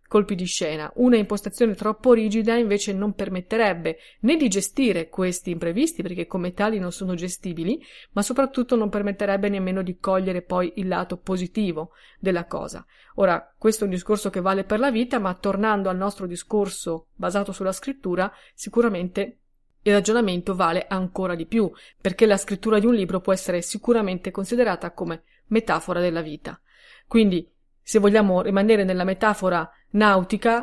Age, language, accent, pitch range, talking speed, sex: 30-49, Italian, native, 185-225 Hz, 155 wpm, female